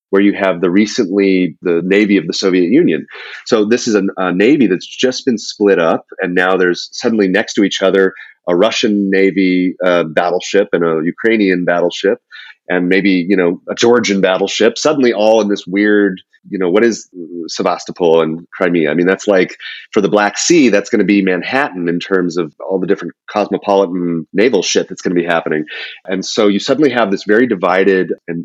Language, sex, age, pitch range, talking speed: English, male, 30-49, 85-105 Hz, 195 wpm